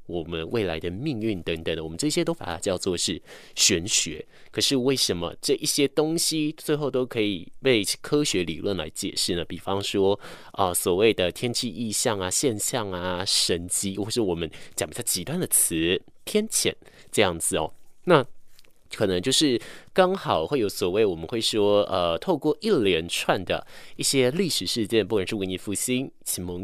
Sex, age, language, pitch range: male, 20-39, Chinese, 90-135 Hz